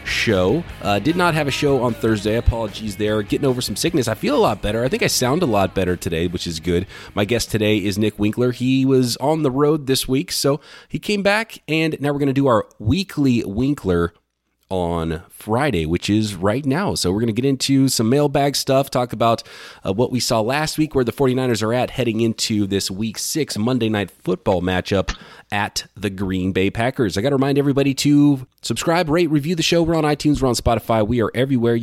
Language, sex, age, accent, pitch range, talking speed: English, male, 30-49, American, 105-135 Hz, 225 wpm